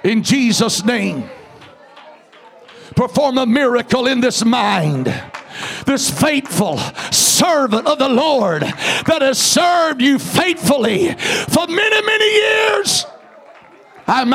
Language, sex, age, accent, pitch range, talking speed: English, male, 60-79, American, 220-290 Hz, 105 wpm